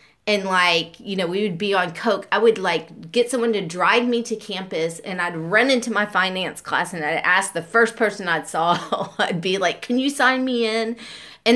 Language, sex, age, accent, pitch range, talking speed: English, female, 30-49, American, 160-205 Hz, 225 wpm